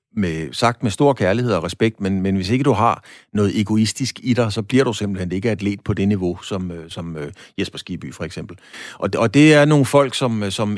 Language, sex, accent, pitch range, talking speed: Danish, male, native, 95-120 Hz, 225 wpm